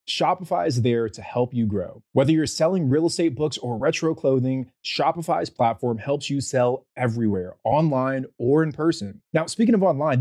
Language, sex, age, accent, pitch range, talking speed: English, male, 30-49, American, 115-160 Hz, 175 wpm